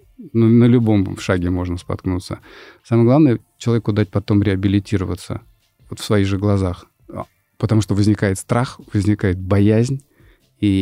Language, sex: Russian, male